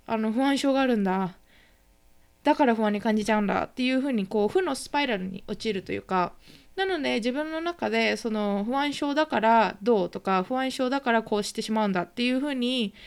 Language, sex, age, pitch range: Japanese, female, 20-39, 195-260 Hz